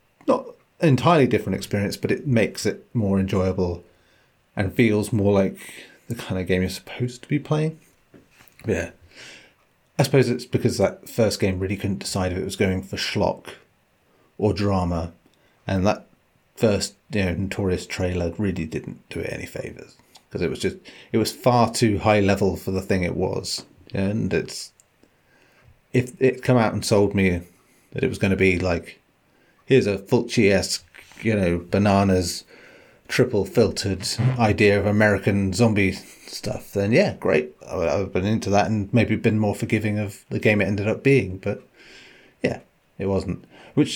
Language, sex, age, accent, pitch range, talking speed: English, male, 30-49, British, 95-125 Hz, 170 wpm